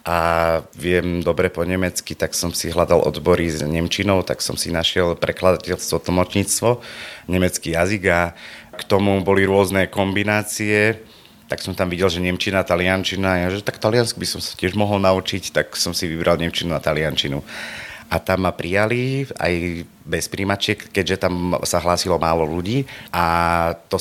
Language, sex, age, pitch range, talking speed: Slovak, male, 30-49, 85-100 Hz, 160 wpm